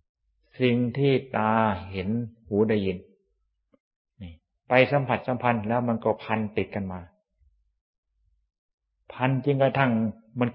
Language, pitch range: Thai, 95-125 Hz